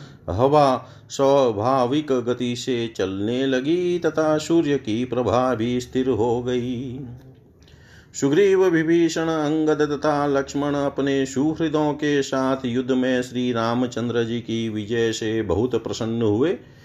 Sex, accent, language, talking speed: male, native, Hindi, 120 wpm